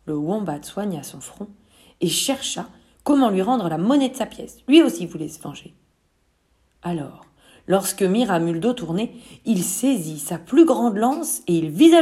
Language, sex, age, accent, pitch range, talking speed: French, female, 40-59, French, 165-230 Hz, 180 wpm